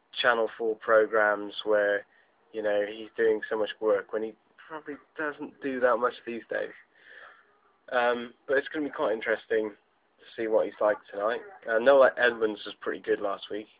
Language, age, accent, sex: English, 10-29, British, male